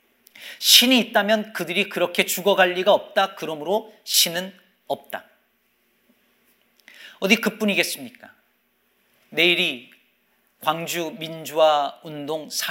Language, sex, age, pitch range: Korean, male, 40-59, 175-220 Hz